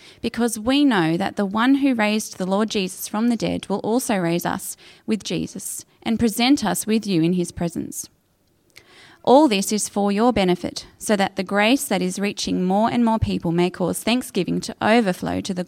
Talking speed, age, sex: 200 wpm, 20-39, female